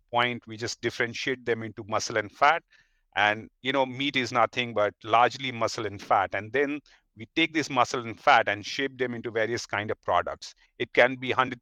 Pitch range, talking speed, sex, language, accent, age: 115-135 Hz, 205 wpm, male, English, Indian, 40-59